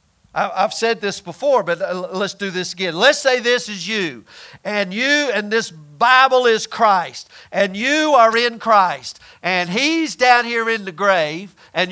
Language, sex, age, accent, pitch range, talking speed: English, male, 50-69, American, 190-255 Hz, 170 wpm